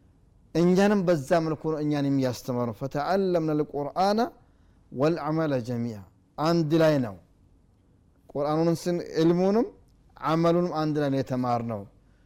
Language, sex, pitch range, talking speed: Amharic, male, 115-165 Hz, 90 wpm